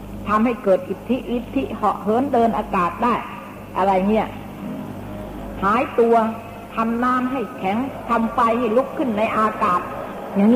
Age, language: 60-79, Thai